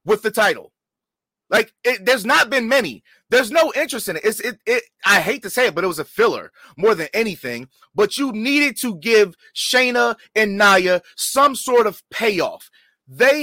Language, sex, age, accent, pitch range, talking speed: English, male, 30-49, American, 190-275 Hz, 190 wpm